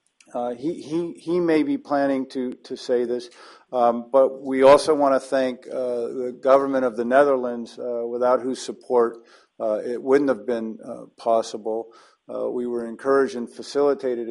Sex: male